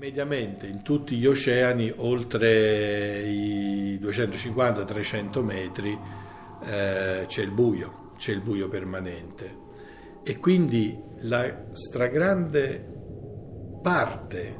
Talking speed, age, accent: 90 wpm, 60-79, native